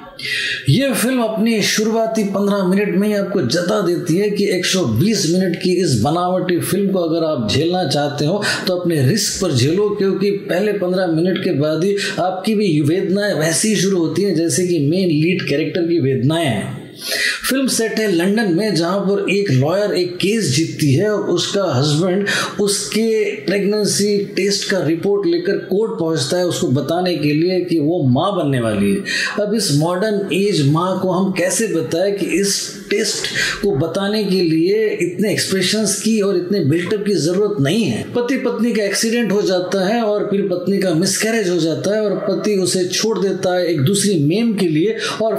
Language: Hindi